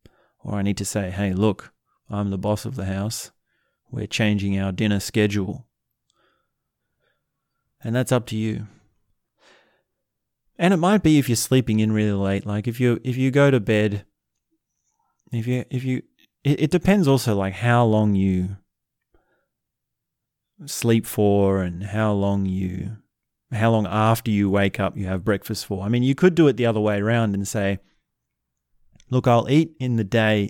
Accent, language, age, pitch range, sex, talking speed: Australian, English, 30-49, 100-125 Hz, male, 170 wpm